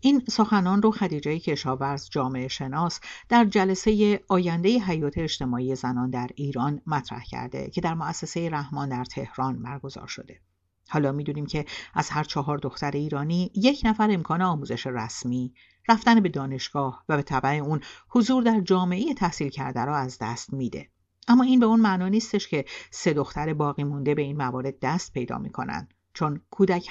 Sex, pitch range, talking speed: female, 135-190 Hz, 165 wpm